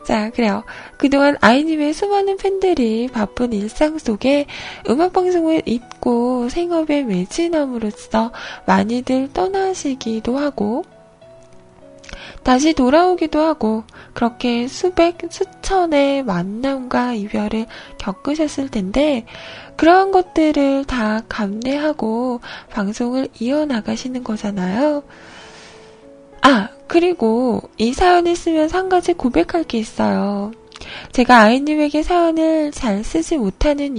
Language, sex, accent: Korean, female, native